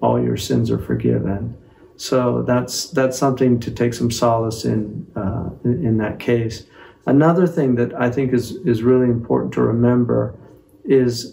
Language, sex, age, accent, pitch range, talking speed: English, male, 50-69, American, 115-130 Hz, 160 wpm